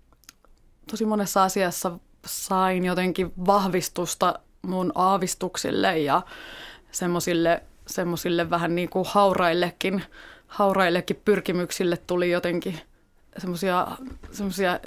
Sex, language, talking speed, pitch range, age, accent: female, Finnish, 80 wpm, 175-195 Hz, 20-39, native